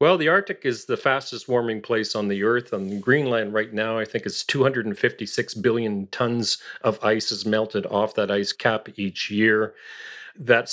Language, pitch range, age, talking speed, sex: English, 110-130 Hz, 40-59, 180 wpm, male